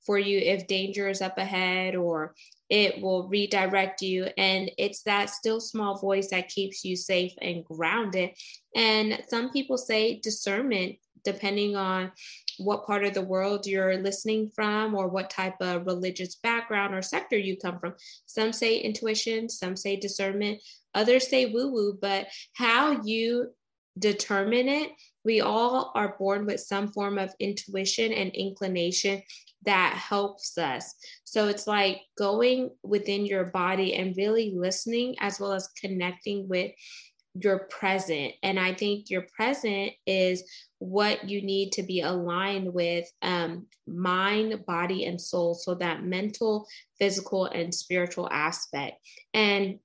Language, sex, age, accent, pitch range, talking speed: English, female, 20-39, American, 185-215 Hz, 145 wpm